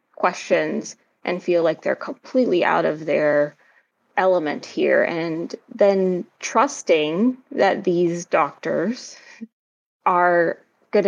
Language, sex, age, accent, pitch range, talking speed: English, female, 20-39, American, 175-235 Hz, 105 wpm